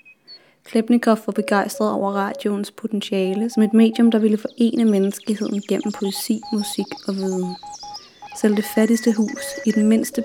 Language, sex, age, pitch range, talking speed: Danish, female, 30-49, 200-225 Hz, 145 wpm